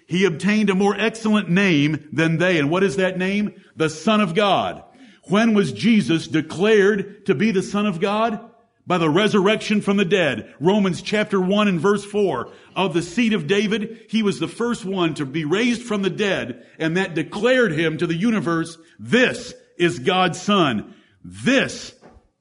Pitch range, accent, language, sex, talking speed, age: 165-210 Hz, American, English, male, 180 wpm, 50-69